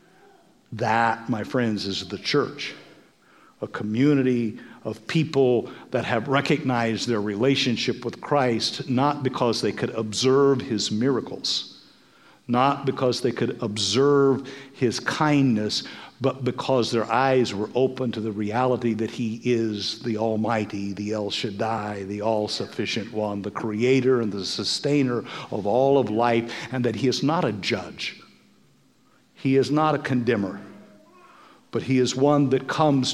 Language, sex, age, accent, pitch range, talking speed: English, male, 50-69, American, 110-135 Hz, 140 wpm